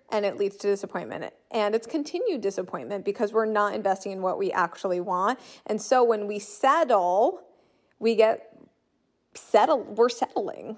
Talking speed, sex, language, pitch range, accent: 155 wpm, female, English, 195-250 Hz, American